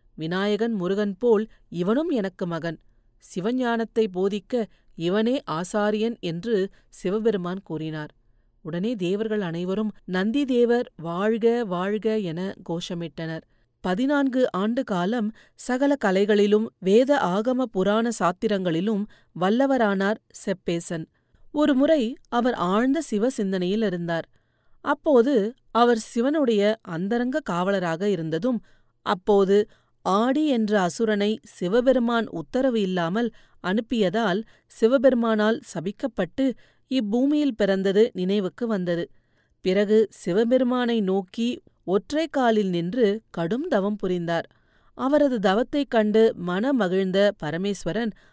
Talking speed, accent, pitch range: 85 wpm, native, 185-240 Hz